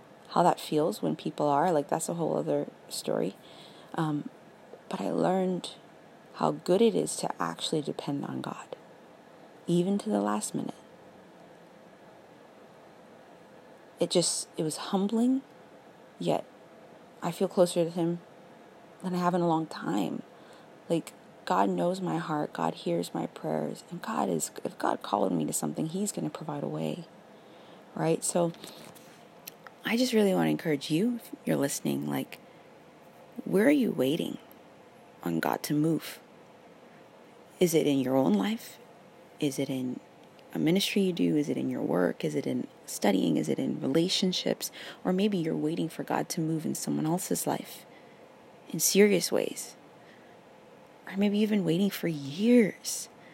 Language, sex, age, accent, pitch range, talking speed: English, female, 30-49, American, 150-195 Hz, 160 wpm